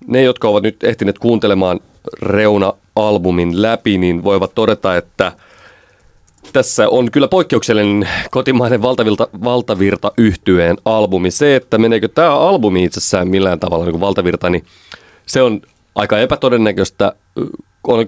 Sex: male